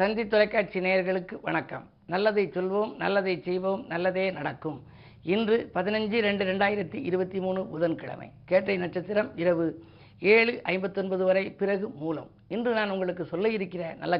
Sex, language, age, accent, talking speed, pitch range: female, Tamil, 50-69, native, 130 wpm, 175-215 Hz